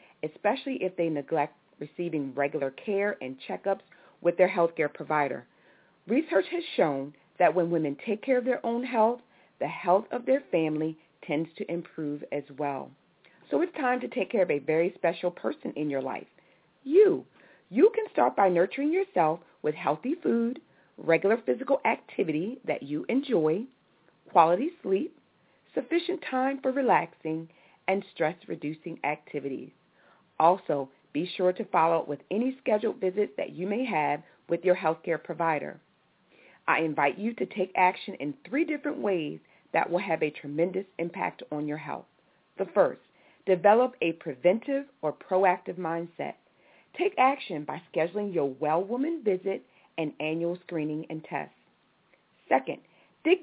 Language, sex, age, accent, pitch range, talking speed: English, female, 40-59, American, 155-235 Hz, 150 wpm